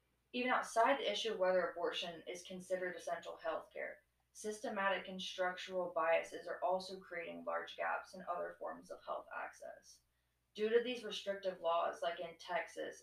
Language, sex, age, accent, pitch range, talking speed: English, female, 20-39, American, 175-195 Hz, 160 wpm